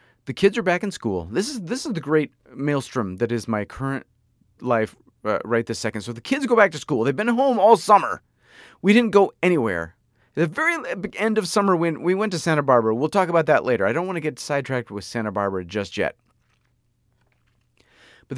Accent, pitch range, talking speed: American, 115-160 Hz, 215 wpm